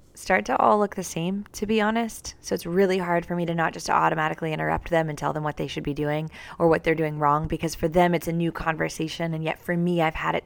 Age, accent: 20-39, American